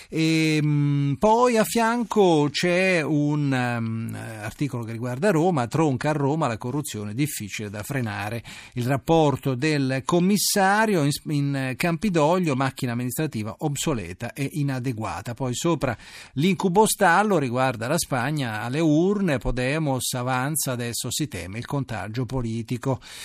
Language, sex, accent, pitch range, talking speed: Italian, male, native, 115-150 Hz, 120 wpm